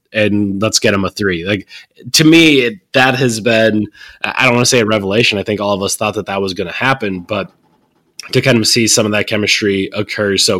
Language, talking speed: English, 240 wpm